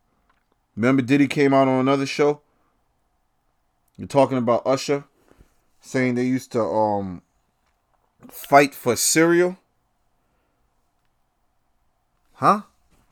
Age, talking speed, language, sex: 30-49, 90 wpm, English, male